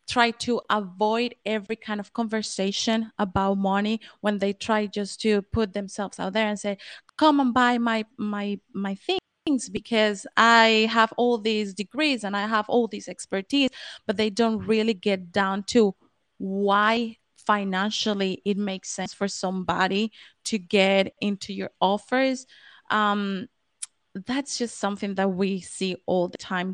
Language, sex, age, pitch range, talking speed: English, female, 20-39, 195-225 Hz, 155 wpm